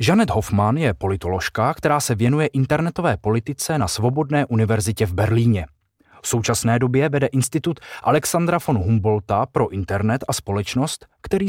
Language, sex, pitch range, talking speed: Czech, male, 100-140 Hz, 140 wpm